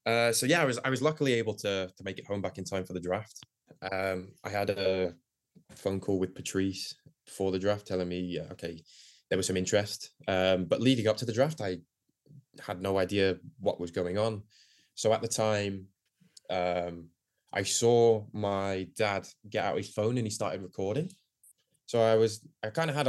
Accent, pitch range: British, 95-115 Hz